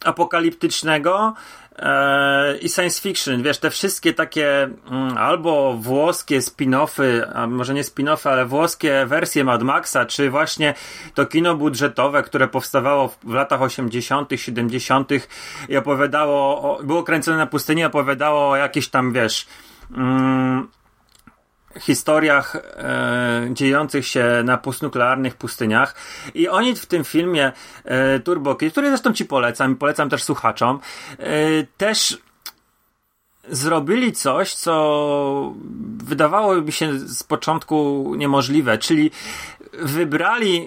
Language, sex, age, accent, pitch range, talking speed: Polish, male, 30-49, native, 135-165 Hz, 120 wpm